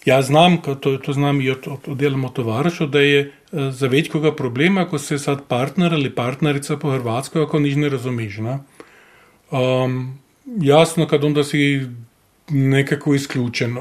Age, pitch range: 40-59, 135-155 Hz